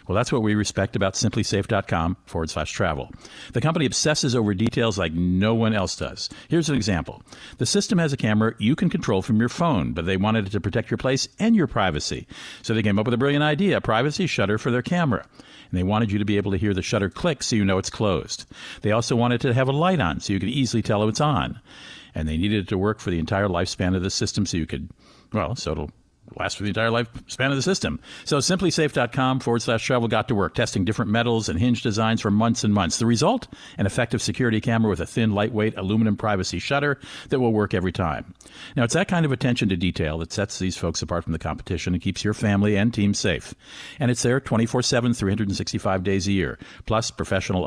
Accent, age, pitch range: American, 50-69, 95-125 Hz